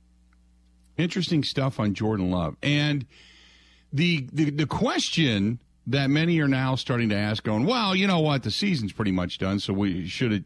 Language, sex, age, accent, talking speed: English, male, 50-69, American, 170 wpm